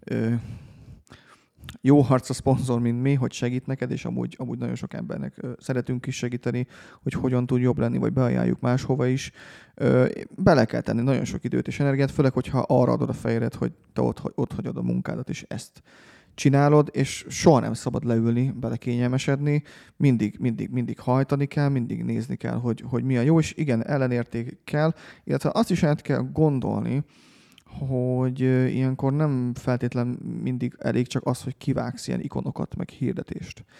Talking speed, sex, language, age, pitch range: 165 wpm, male, Hungarian, 30-49, 120-145 Hz